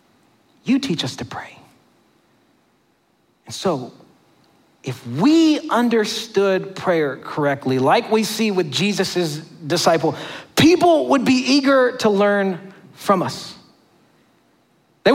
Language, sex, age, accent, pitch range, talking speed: English, male, 40-59, American, 190-295 Hz, 105 wpm